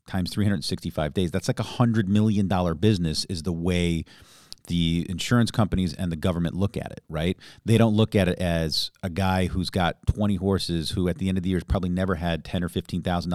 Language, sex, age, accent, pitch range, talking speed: English, male, 40-59, American, 85-105 Hz, 210 wpm